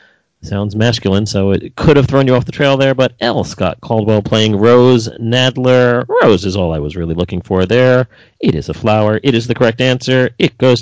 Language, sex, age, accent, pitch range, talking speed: English, male, 40-59, American, 110-145 Hz, 215 wpm